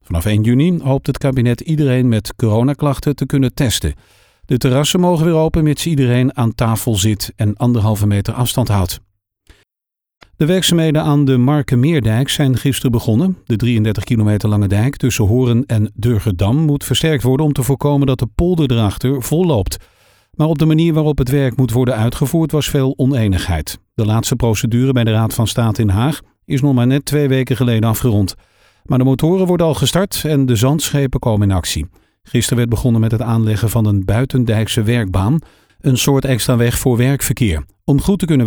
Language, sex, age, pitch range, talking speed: Dutch, male, 50-69, 110-145 Hz, 185 wpm